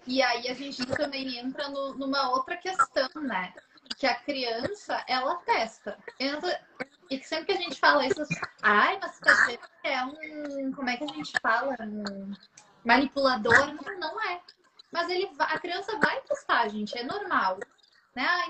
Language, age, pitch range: Portuguese, 10-29, 260-350 Hz